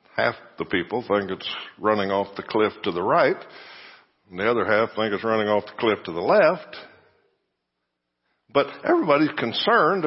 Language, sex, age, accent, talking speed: English, male, 60-79, American, 165 wpm